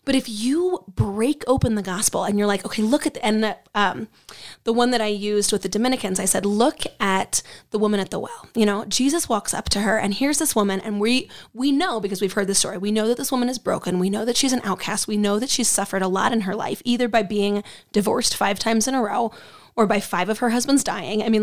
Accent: American